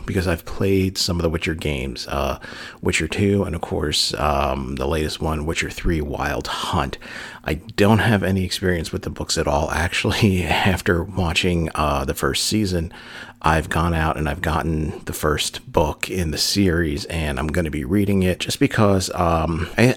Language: English